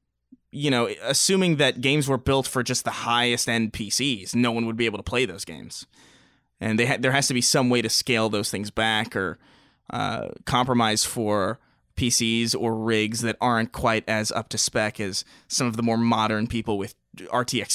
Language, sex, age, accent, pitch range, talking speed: English, male, 20-39, American, 110-130 Hz, 200 wpm